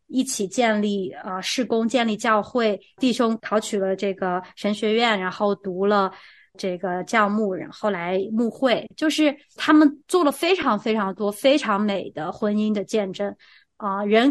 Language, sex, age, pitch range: Chinese, female, 20-39, 195-255 Hz